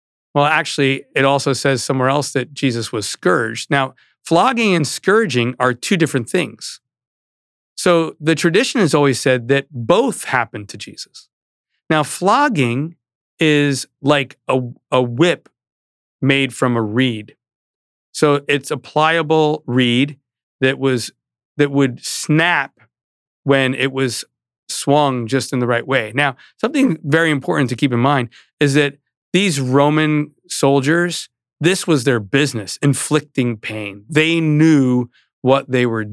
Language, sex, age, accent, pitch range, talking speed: English, male, 40-59, American, 125-150 Hz, 140 wpm